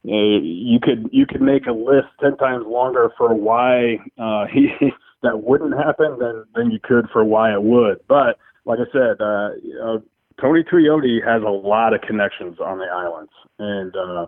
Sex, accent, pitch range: male, American, 105-125 Hz